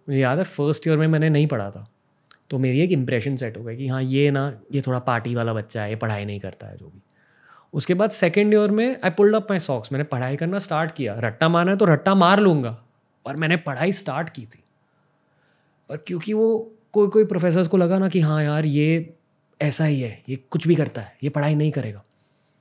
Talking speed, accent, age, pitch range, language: 230 wpm, native, 20-39, 125-170 Hz, Hindi